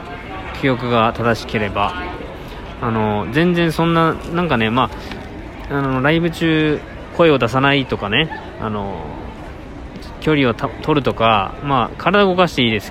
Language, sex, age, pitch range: Japanese, male, 20-39, 105-145 Hz